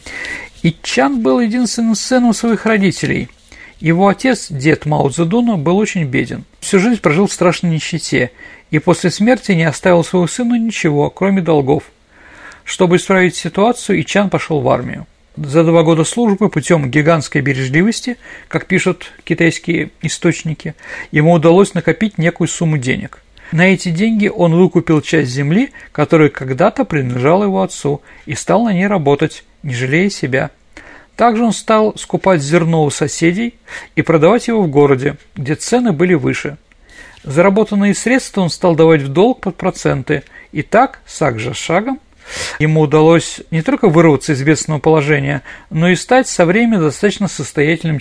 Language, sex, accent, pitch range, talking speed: Russian, male, native, 155-205 Hz, 150 wpm